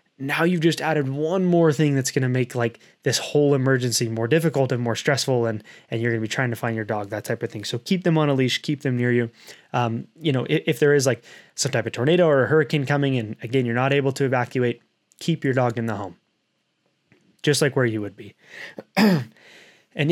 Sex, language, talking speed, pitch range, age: male, English, 235 wpm, 120-145 Hz, 20-39